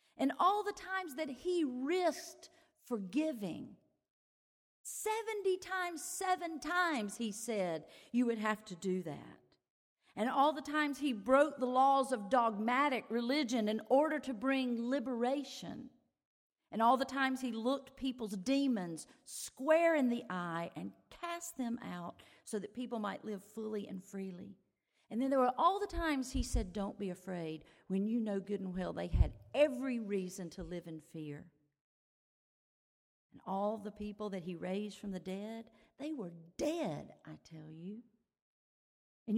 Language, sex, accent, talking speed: English, female, American, 155 wpm